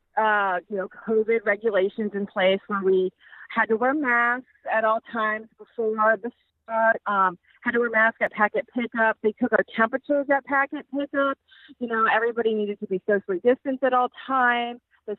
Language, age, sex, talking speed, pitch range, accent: English, 30-49, female, 180 wpm, 210-260 Hz, American